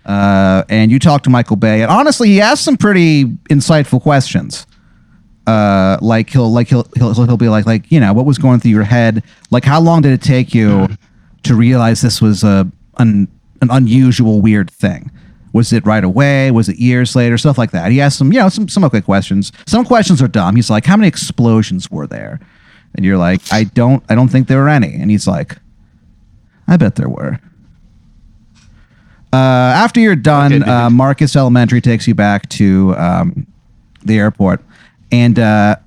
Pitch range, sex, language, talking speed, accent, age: 110-155 Hz, male, English, 190 wpm, American, 40-59